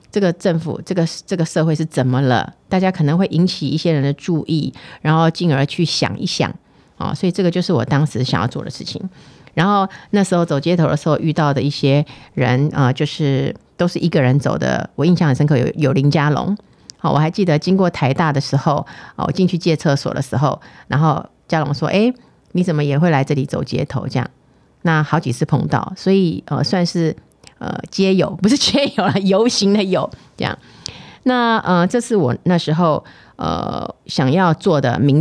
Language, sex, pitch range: Chinese, female, 140-180 Hz